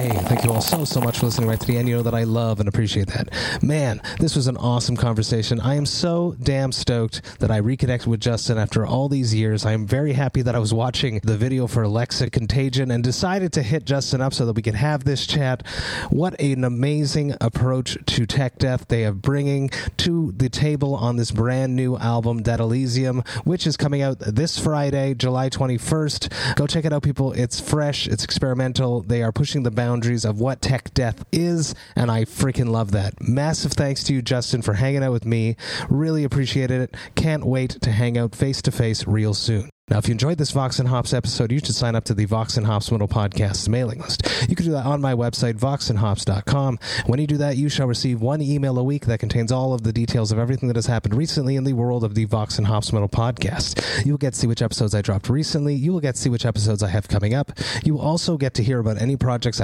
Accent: American